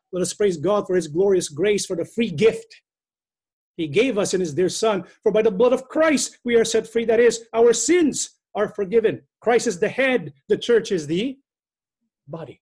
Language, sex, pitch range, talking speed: English, male, 160-245 Hz, 210 wpm